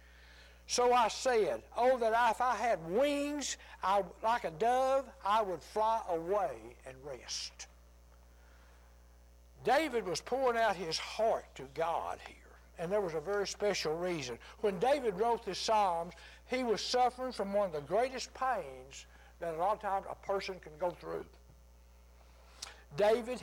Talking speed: 155 wpm